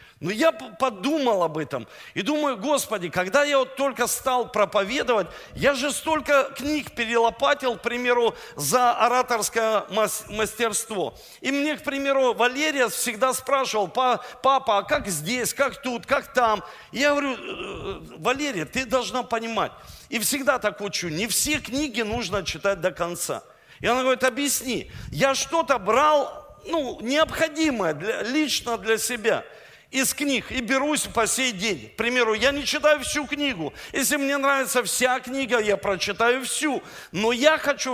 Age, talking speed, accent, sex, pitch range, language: 40-59, 145 wpm, native, male, 230-285 Hz, Russian